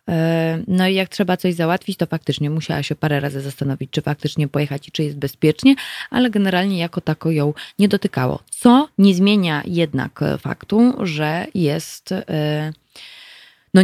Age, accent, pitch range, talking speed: 20-39, native, 150-195 Hz, 150 wpm